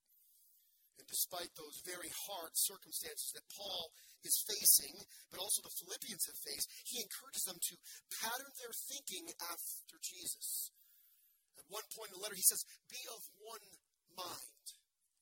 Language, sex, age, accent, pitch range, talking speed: English, male, 40-59, American, 185-250 Hz, 140 wpm